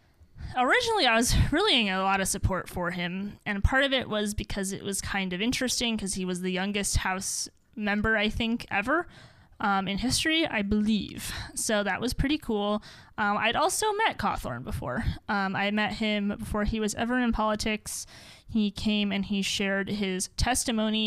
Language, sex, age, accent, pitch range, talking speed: English, female, 20-39, American, 195-230 Hz, 185 wpm